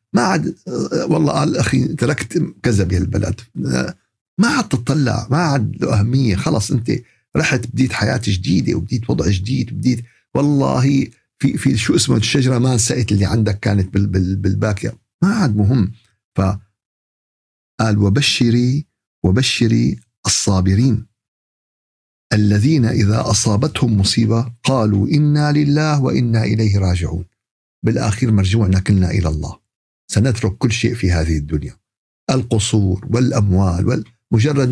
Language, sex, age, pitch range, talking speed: Arabic, male, 50-69, 100-125 Hz, 120 wpm